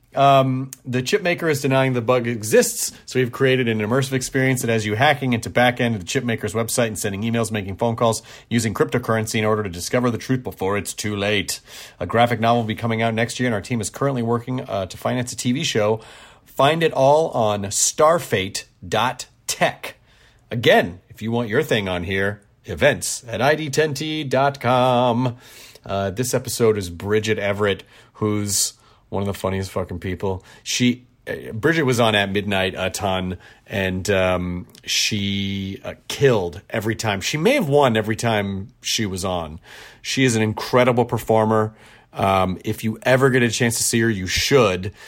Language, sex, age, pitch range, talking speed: English, male, 40-59, 105-125 Hz, 180 wpm